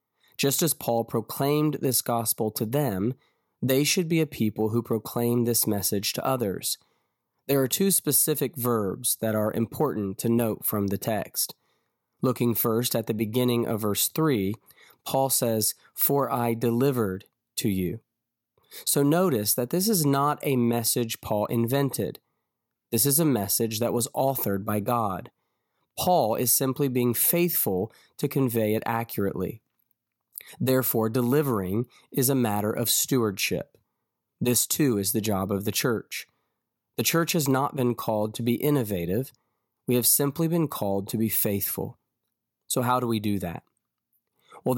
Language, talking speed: English, 155 wpm